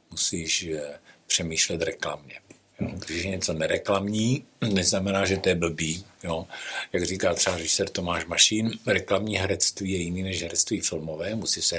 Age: 60-79